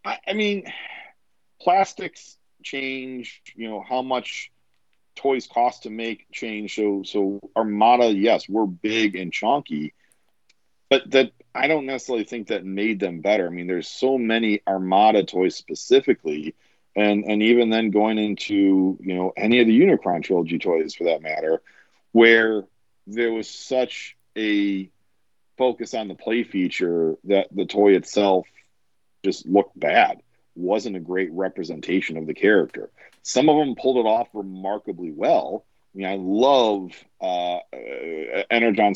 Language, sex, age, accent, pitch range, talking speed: English, male, 40-59, American, 95-125 Hz, 145 wpm